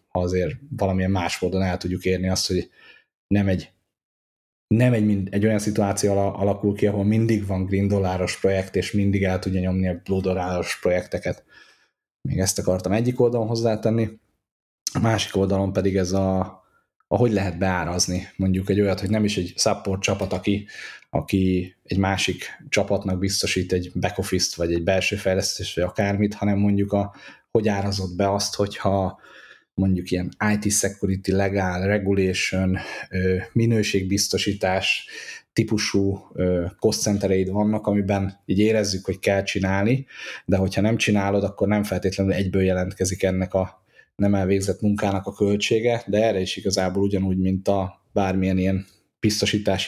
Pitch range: 95-105 Hz